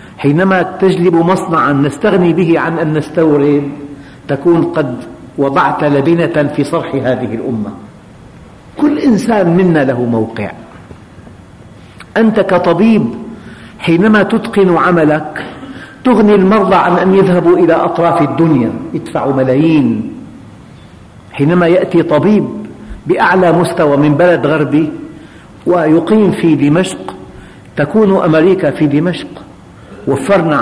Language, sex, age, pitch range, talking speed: Arabic, male, 50-69, 140-185 Hz, 100 wpm